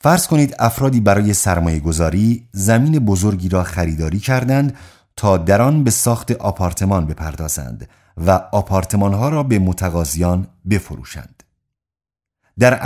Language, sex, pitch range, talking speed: Persian, male, 90-120 Hz, 110 wpm